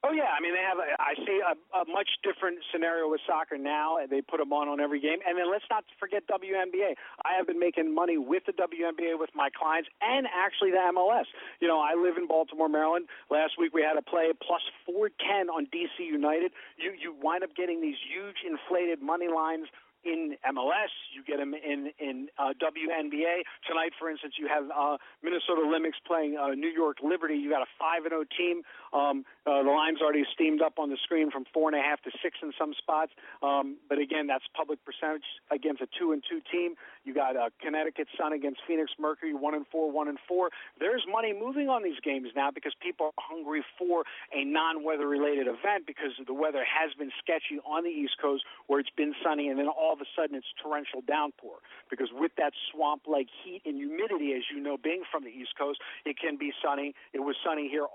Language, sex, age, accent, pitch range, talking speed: English, male, 50-69, American, 145-175 Hz, 220 wpm